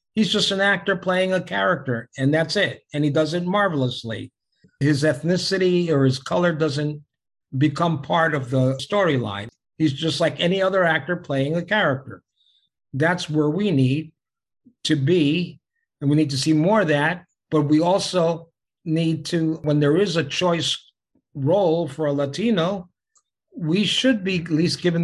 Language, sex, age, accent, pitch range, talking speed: English, male, 50-69, American, 135-170 Hz, 165 wpm